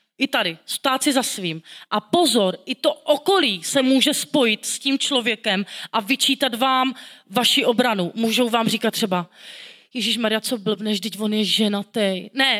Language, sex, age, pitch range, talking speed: Czech, female, 30-49, 200-260 Hz, 165 wpm